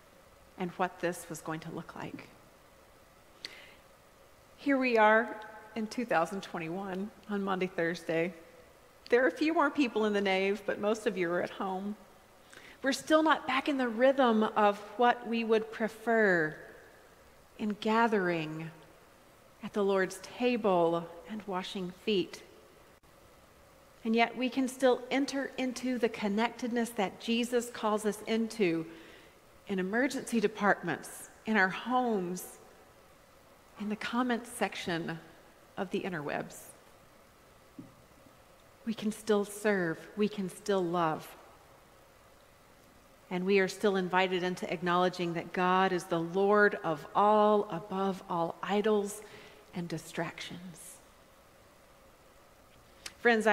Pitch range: 180-225 Hz